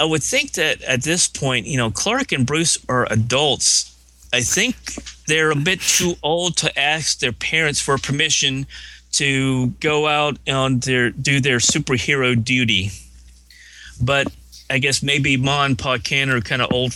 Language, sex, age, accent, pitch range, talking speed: English, male, 30-49, American, 85-140 Hz, 165 wpm